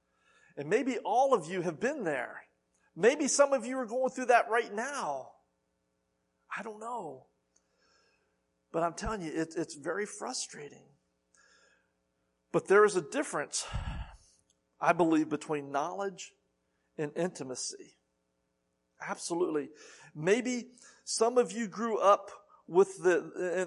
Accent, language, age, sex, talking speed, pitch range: American, English, 50-69, male, 125 wpm, 150-240 Hz